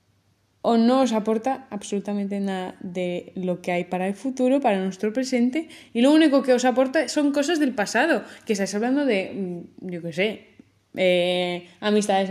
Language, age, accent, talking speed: Spanish, 20-39, Spanish, 170 wpm